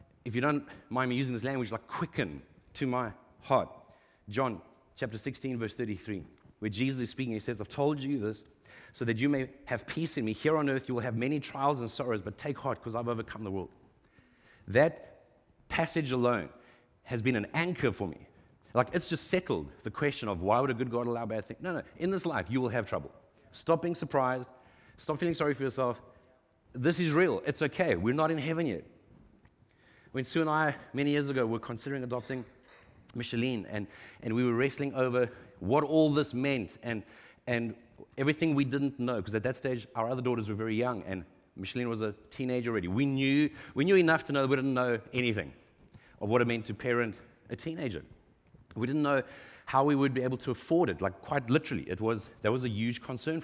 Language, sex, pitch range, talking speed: English, male, 115-140 Hz, 210 wpm